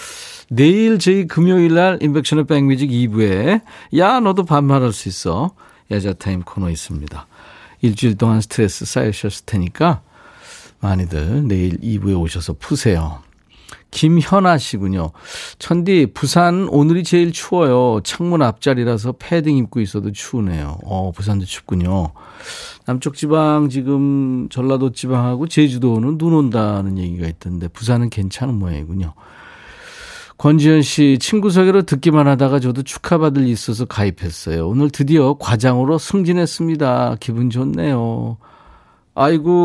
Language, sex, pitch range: Korean, male, 100-150 Hz